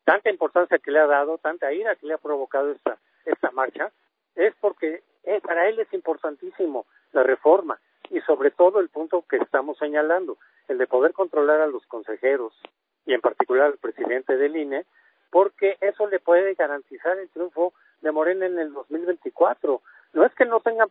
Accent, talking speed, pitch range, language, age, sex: Mexican, 180 wpm, 150-250 Hz, Spanish, 50-69, male